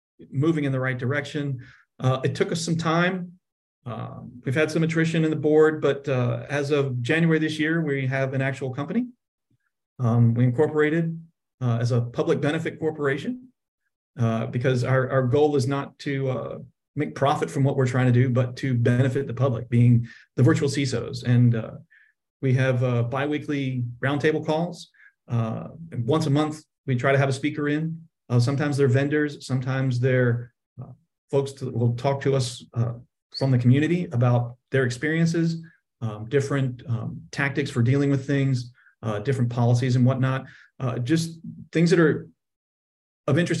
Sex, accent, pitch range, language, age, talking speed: male, American, 125-150 Hz, English, 40-59, 170 wpm